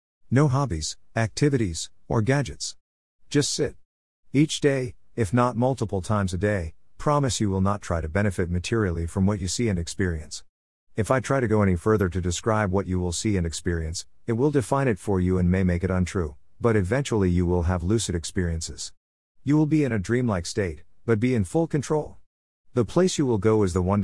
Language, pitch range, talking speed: English, 85-115 Hz, 205 wpm